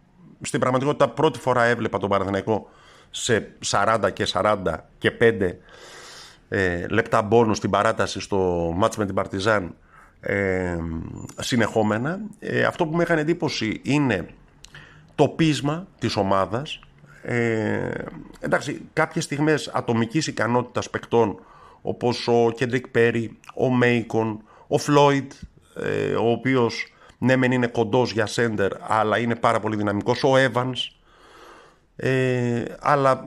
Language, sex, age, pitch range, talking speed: Greek, male, 50-69, 105-135 Hz, 125 wpm